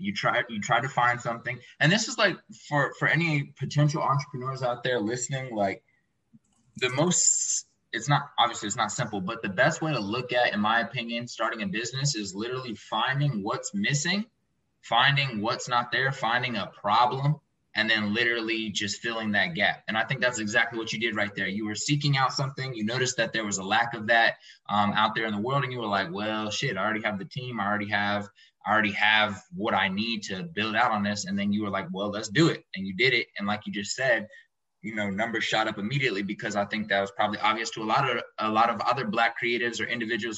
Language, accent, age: English, American, 20-39